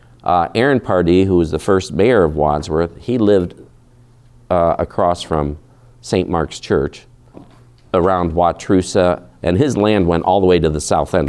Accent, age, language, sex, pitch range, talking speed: American, 50-69, English, male, 85-120 Hz, 165 wpm